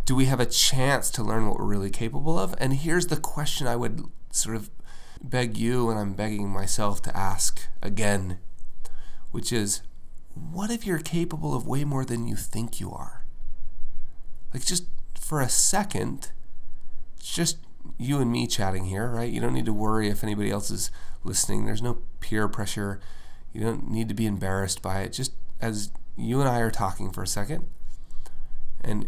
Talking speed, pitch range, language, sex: 180 wpm, 95-120 Hz, English, male